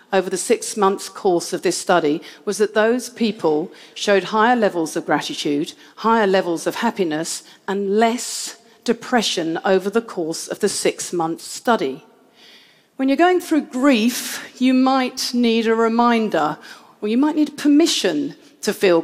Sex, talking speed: female, 150 wpm